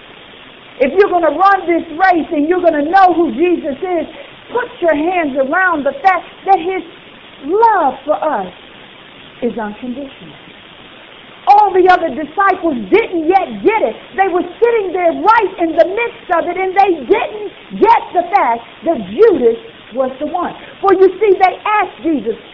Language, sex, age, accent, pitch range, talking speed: English, female, 50-69, American, 280-370 Hz, 170 wpm